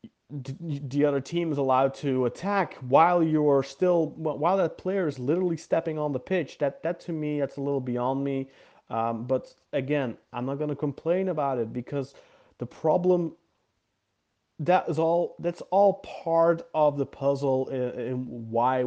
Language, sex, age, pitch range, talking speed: English, male, 30-49, 130-180 Hz, 165 wpm